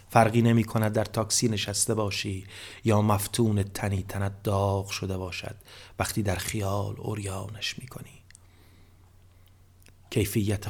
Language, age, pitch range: Persian, 30-49, 95-110 Hz